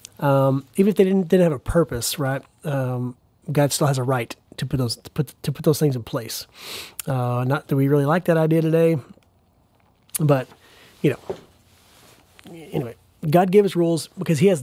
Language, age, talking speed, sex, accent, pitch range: English, 30-49, 190 wpm, male, American, 135-165 Hz